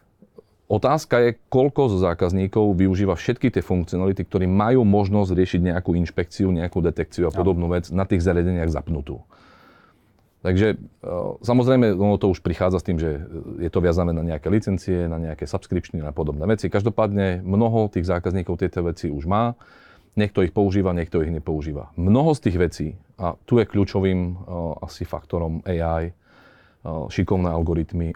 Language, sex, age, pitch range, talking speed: Slovak, male, 40-59, 85-100 Hz, 155 wpm